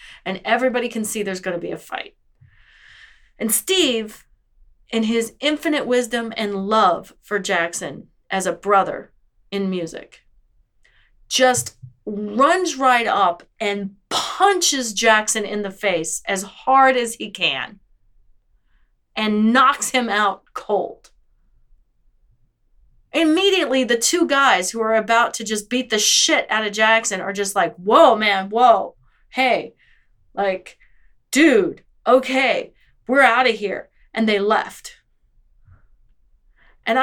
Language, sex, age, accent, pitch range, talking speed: English, female, 30-49, American, 200-275 Hz, 125 wpm